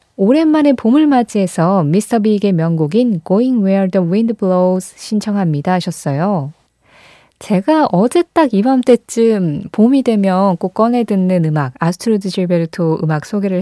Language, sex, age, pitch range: Korean, female, 20-39, 170-230 Hz